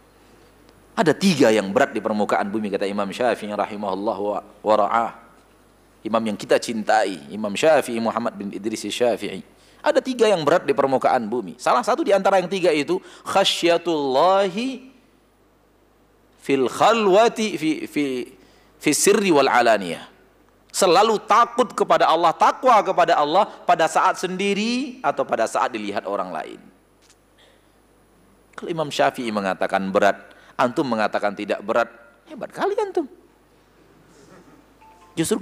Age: 40-59